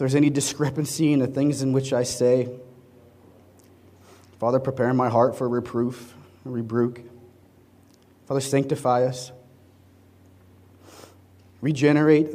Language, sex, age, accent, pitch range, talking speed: English, male, 30-49, American, 105-140 Hz, 100 wpm